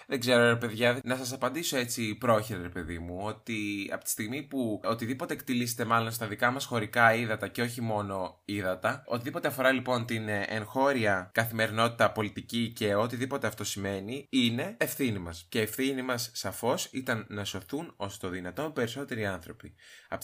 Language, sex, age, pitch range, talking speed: Greek, male, 20-39, 105-140 Hz, 170 wpm